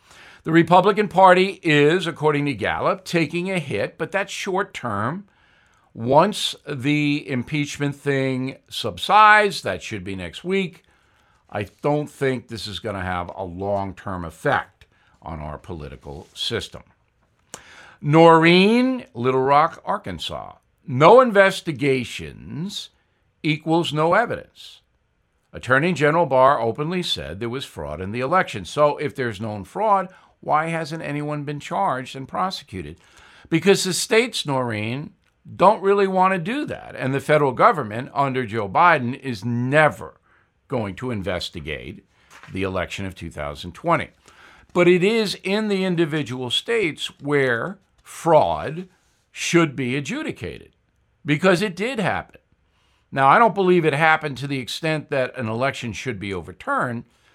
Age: 60-79